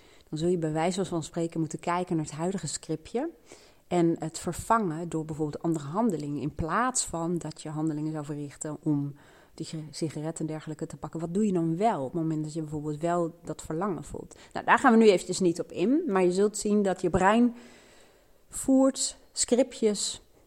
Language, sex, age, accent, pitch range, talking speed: Dutch, female, 30-49, Dutch, 150-185 Hz, 200 wpm